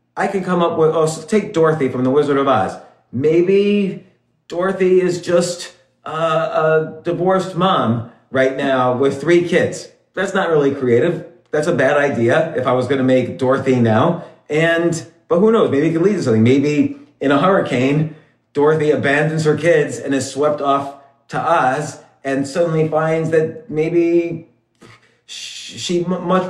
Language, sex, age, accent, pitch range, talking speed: English, male, 40-59, American, 130-170 Hz, 165 wpm